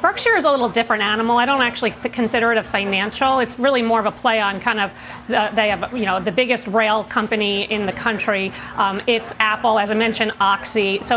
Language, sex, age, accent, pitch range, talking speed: English, female, 40-59, American, 220-285 Hz, 225 wpm